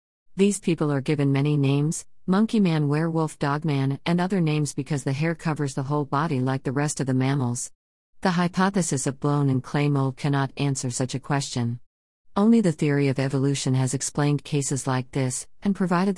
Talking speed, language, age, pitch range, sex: 190 wpm, Arabic, 50-69, 130-155 Hz, female